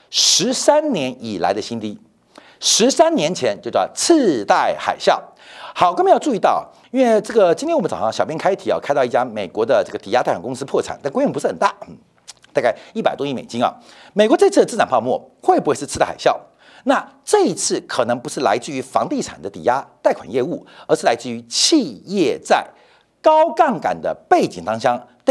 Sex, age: male, 50-69